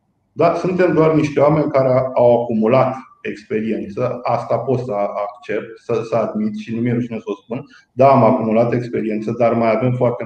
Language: Romanian